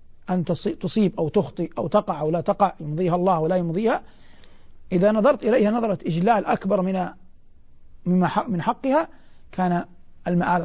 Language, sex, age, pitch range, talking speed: Arabic, male, 50-69, 170-220 Hz, 130 wpm